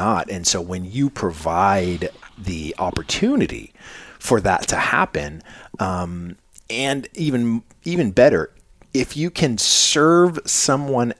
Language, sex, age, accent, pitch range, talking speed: English, male, 40-59, American, 85-110 Hz, 120 wpm